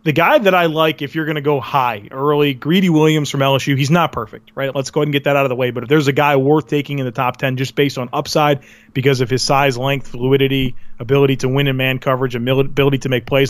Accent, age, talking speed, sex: American, 30-49, 270 wpm, male